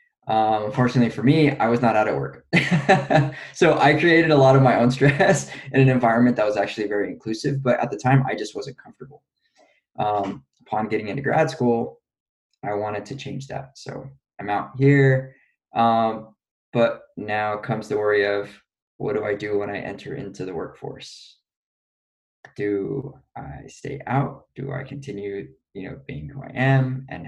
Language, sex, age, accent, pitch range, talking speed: English, male, 20-39, American, 105-135 Hz, 180 wpm